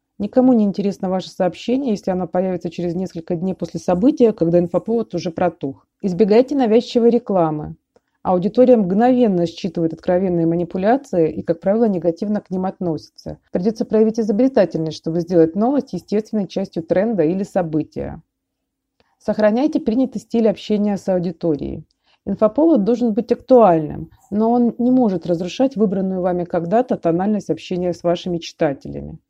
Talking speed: 135 wpm